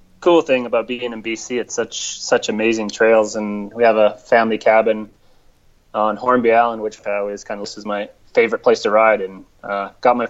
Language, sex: English, male